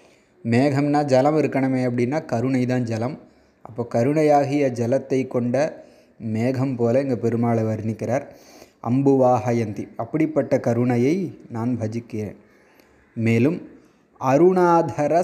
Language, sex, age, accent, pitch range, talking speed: Tamil, male, 20-39, native, 120-140 Hz, 85 wpm